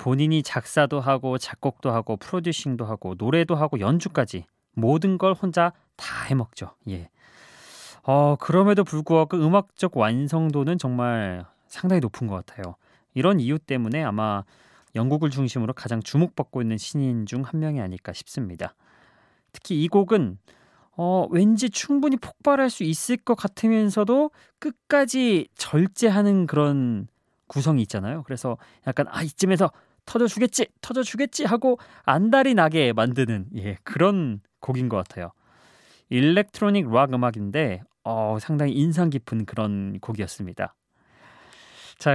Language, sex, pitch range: Korean, male, 115-175 Hz